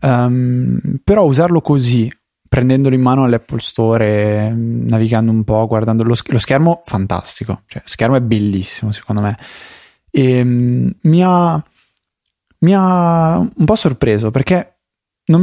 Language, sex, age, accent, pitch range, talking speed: Italian, male, 20-39, native, 110-130 Hz, 135 wpm